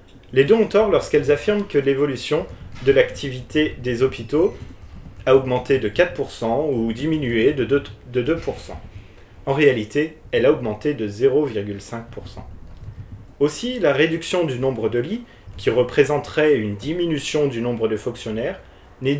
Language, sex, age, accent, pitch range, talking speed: French, male, 30-49, French, 110-155 Hz, 140 wpm